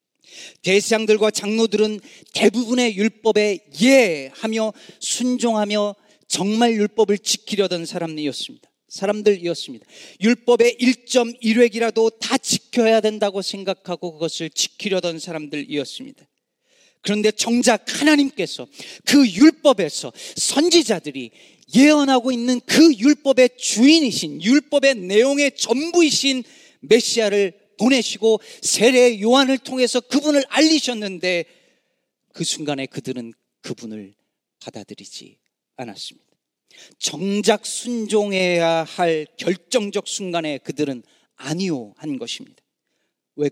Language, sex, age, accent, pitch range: Korean, male, 40-59, native, 165-245 Hz